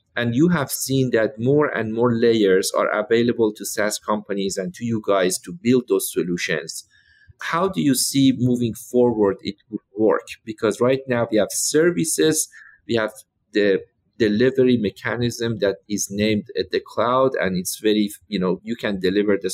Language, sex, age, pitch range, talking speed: English, male, 50-69, 105-125 Hz, 175 wpm